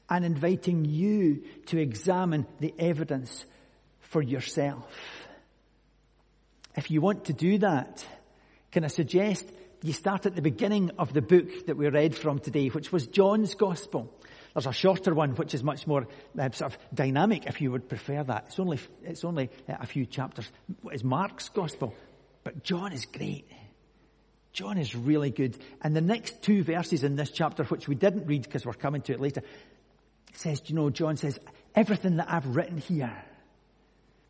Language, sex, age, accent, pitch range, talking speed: English, male, 50-69, British, 135-185 Hz, 170 wpm